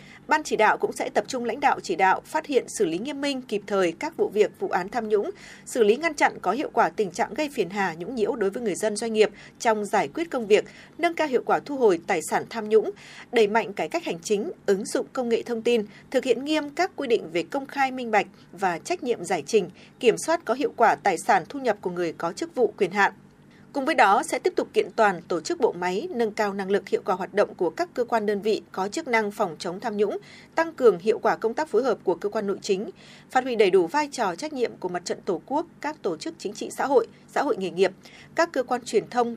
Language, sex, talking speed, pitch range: Vietnamese, female, 275 wpm, 210-350 Hz